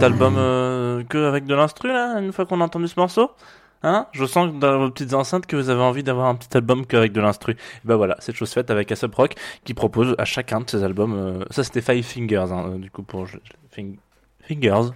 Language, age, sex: French, 20-39, male